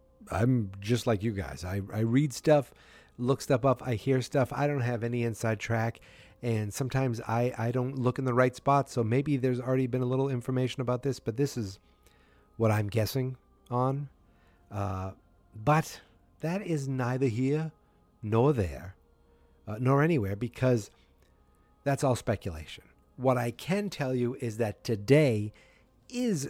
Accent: American